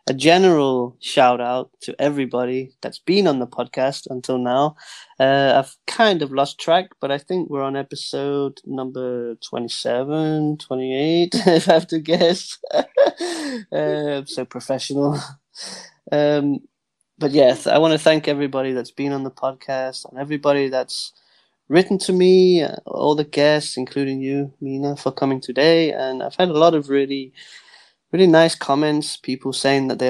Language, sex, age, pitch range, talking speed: Danish, male, 20-39, 130-150 Hz, 160 wpm